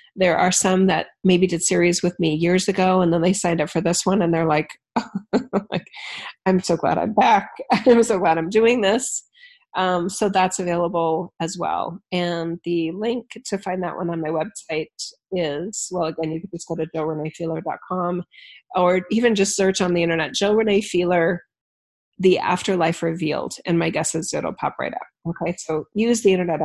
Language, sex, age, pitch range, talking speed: English, female, 30-49, 170-200 Hz, 190 wpm